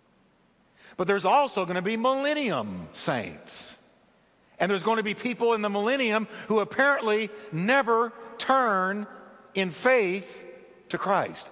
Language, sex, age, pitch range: English, male, 50-69, 145-210 Hz